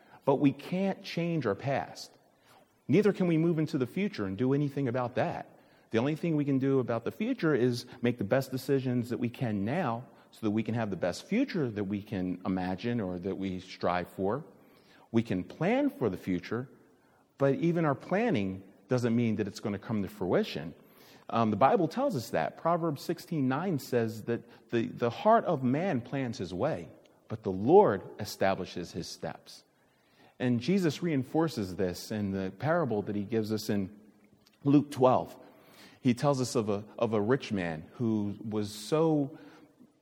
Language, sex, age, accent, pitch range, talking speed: English, male, 40-59, American, 110-170 Hz, 185 wpm